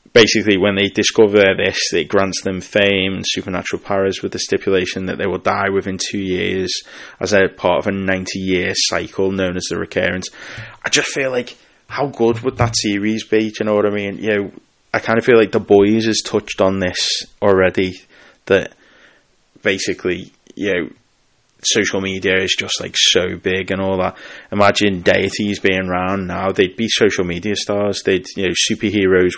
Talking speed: 190 wpm